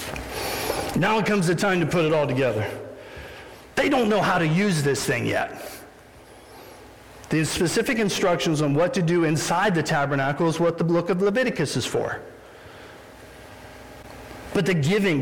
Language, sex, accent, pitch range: English, male, American, 165-220 Hz